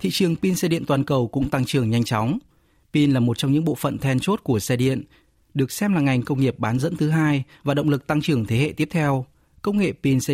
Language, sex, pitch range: Vietnamese, male, 120-155 Hz